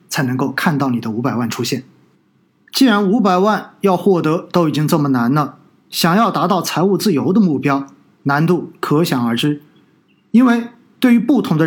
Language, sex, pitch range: Chinese, male, 150-210 Hz